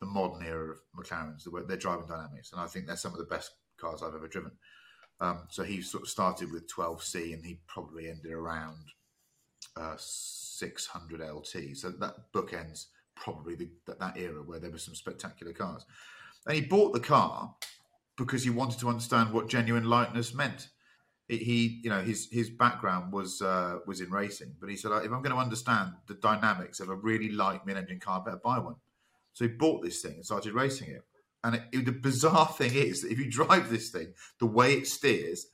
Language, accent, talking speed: English, British, 205 wpm